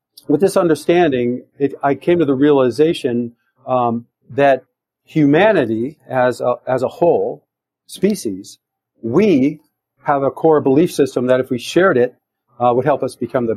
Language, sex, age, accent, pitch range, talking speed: English, male, 40-59, American, 125-150 Hz, 155 wpm